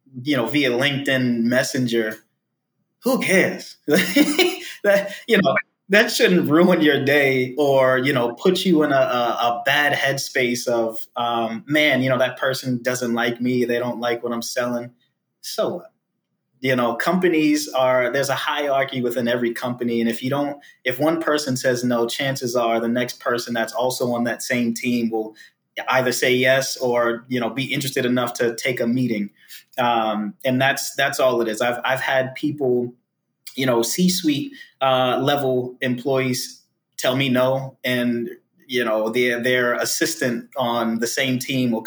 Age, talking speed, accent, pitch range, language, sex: 20-39, 170 wpm, American, 120-145 Hz, English, male